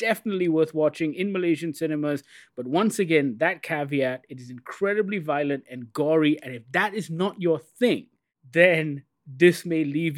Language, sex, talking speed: English, male, 165 wpm